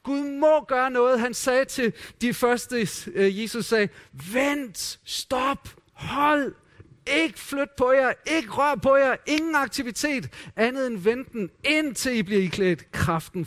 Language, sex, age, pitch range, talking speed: Danish, male, 40-59, 160-210 Hz, 145 wpm